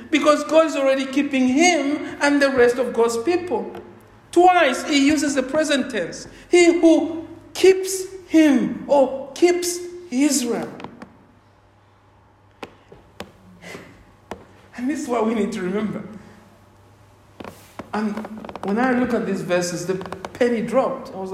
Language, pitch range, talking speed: English, 240-320 Hz, 125 wpm